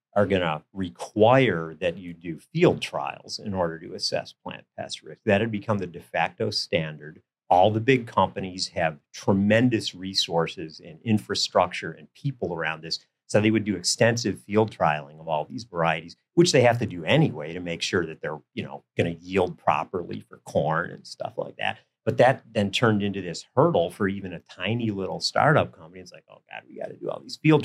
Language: English